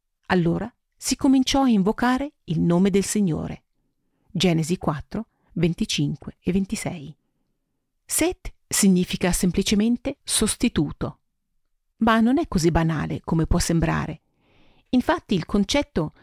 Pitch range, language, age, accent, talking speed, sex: 170-235 Hz, Italian, 40-59, native, 105 wpm, female